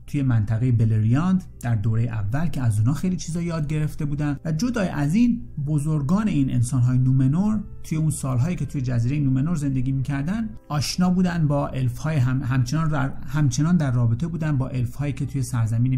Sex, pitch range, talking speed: male, 125-165 Hz, 175 wpm